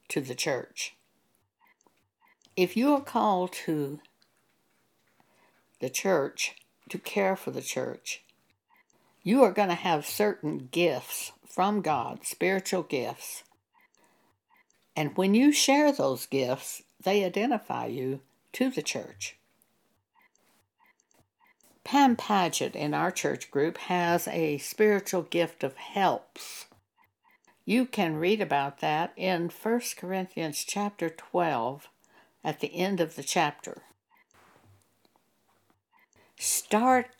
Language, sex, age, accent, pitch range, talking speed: English, female, 60-79, American, 170-240 Hz, 110 wpm